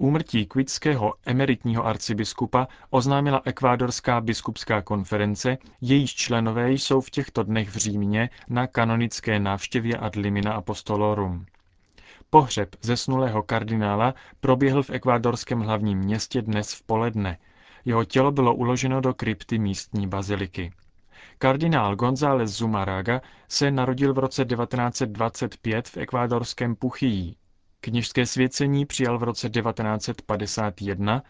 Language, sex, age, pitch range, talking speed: Czech, male, 30-49, 105-130 Hz, 110 wpm